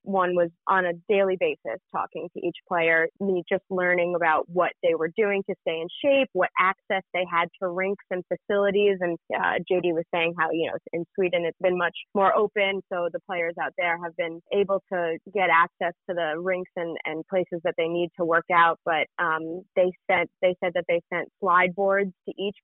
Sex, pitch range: female, 170-190 Hz